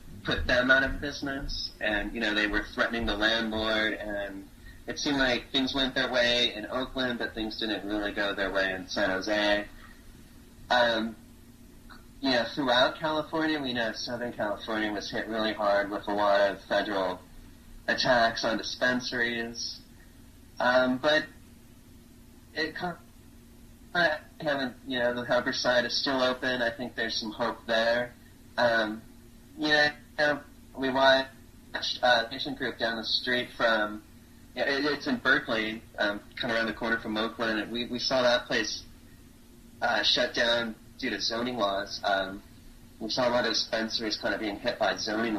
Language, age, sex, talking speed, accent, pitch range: English, 30-49, male, 170 wpm, American, 105-125 Hz